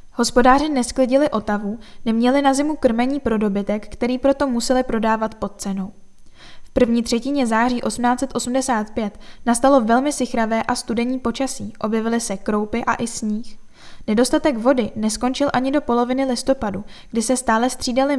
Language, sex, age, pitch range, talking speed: Czech, female, 10-29, 215-260 Hz, 140 wpm